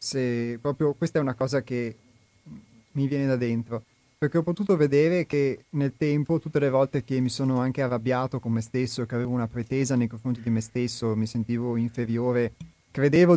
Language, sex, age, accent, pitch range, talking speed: Italian, male, 30-49, native, 120-145 Hz, 190 wpm